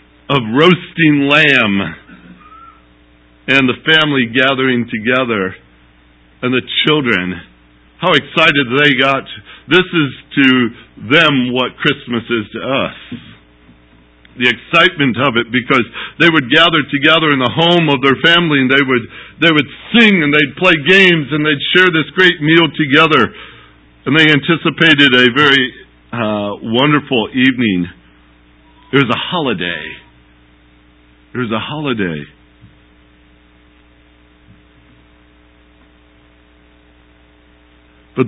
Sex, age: male, 60-79